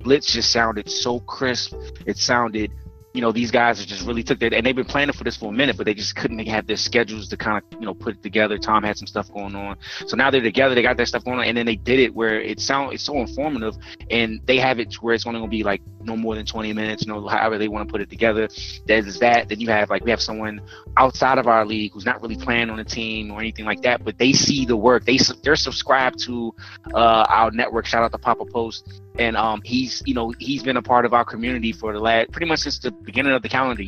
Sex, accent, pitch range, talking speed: male, American, 105-120 Hz, 275 wpm